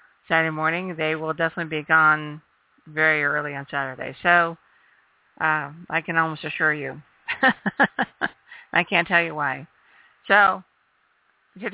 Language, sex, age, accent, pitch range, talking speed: English, female, 50-69, American, 155-175 Hz, 130 wpm